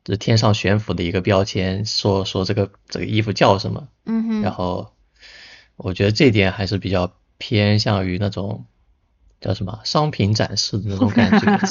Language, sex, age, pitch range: Chinese, male, 20-39, 95-110 Hz